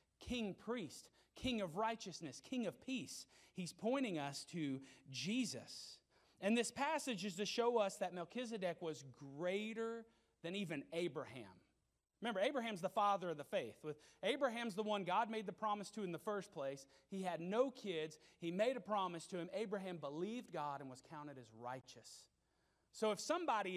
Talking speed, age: 170 wpm, 30-49